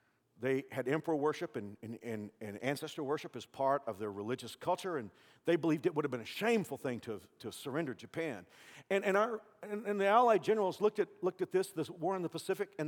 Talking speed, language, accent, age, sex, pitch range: 235 wpm, English, American, 50-69, male, 130-205 Hz